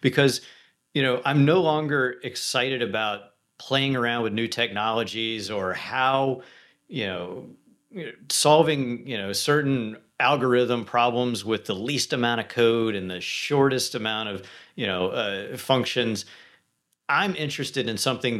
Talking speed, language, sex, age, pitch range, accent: 135 wpm, English, male, 40-59, 100-125 Hz, American